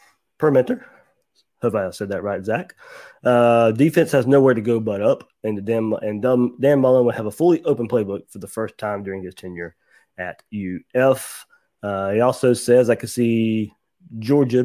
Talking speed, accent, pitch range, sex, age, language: 185 wpm, American, 105-135 Hz, male, 30-49, English